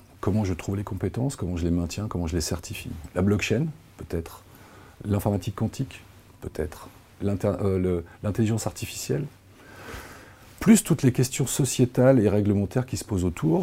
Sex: male